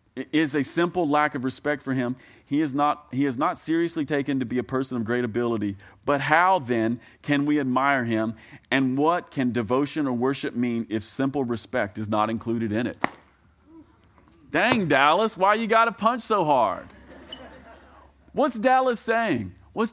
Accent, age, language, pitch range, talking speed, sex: American, 40-59, English, 120-175 Hz, 175 wpm, male